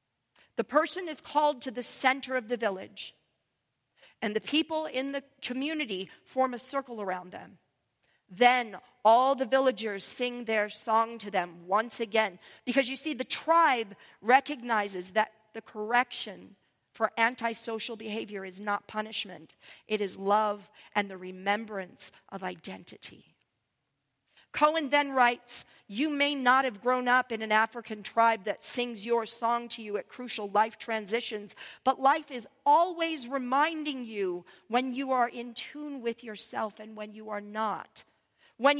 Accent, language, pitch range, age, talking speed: American, English, 215-270 Hz, 40-59, 150 wpm